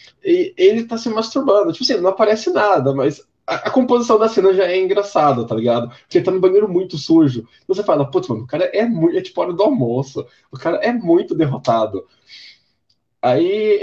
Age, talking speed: 20-39, 200 wpm